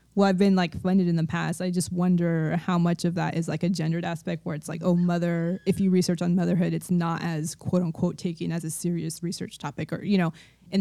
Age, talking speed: 20-39, 250 wpm